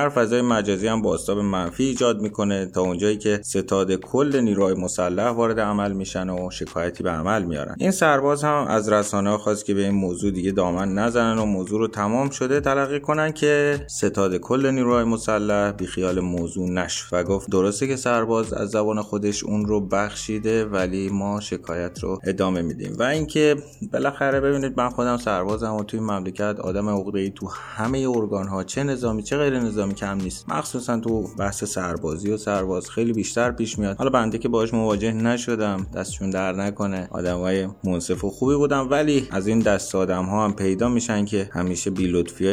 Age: 30-49